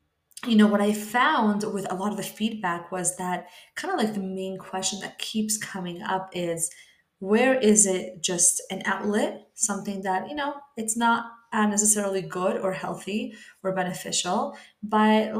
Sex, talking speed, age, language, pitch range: female, 170 wpm, 20-39, English, 185-215 Hz